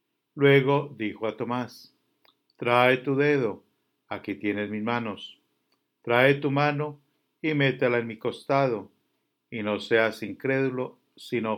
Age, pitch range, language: 50-69, 110-155 Hz, English